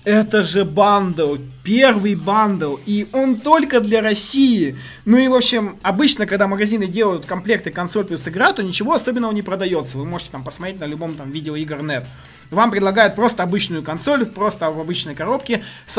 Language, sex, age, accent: Russian, male, 20-39, native